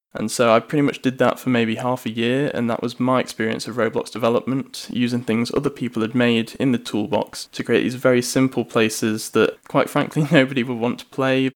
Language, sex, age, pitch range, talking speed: English, male, 10-29, 115-130 Hz, 225 wpm